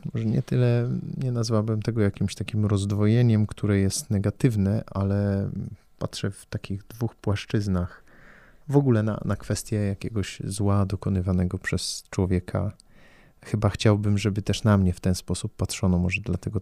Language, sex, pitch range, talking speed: Polish, male, 95-110 Hz, 145 wpm